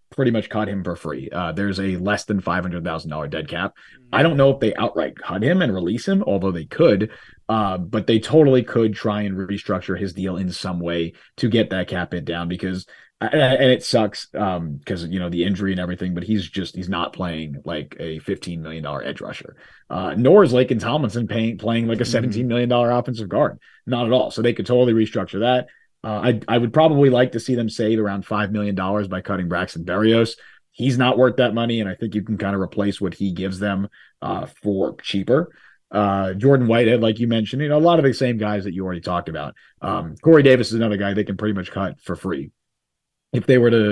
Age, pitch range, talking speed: 30-49, 95-125 Hz, 230 wpm